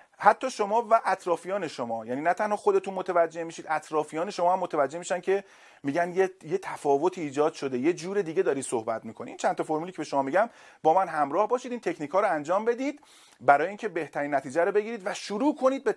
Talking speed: 210 wpm